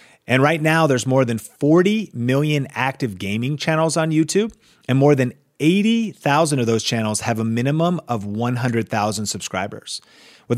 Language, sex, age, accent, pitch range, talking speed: English, male, 30-49, American, 115-160 Hz, 155 wpm